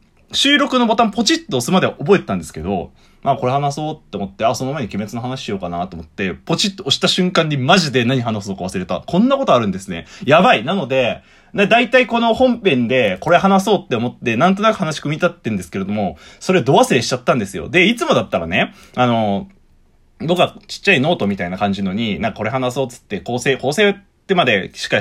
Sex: male